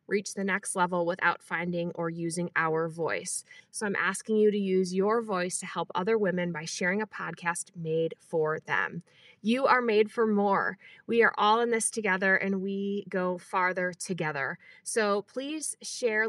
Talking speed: 175 wpm